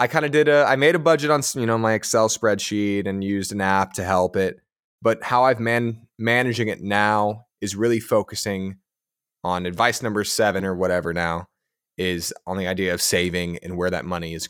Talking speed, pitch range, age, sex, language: 205 wpm, 95-120 Hz, 20-39, male, English